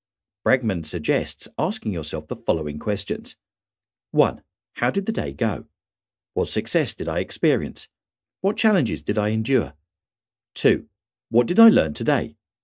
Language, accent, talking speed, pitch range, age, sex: English, British, 140 wpm, 90-120 Hz, 50-69, male